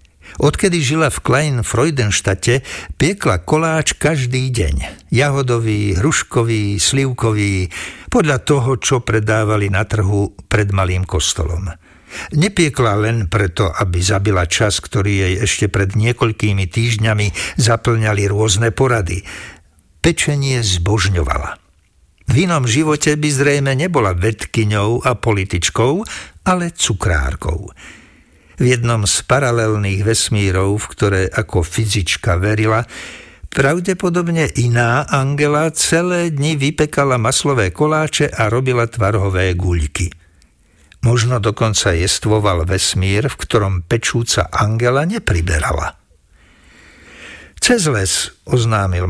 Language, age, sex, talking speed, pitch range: Slovak, 60-79, male, 100 wpm, 95-130 Hz